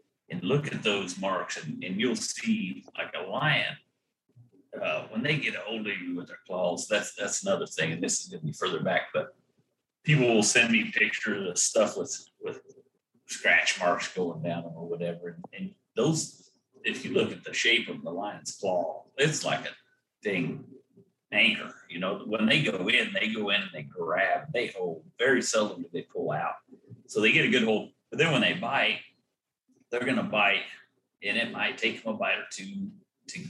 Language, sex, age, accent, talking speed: English, male, 40-59, American, 200 wpm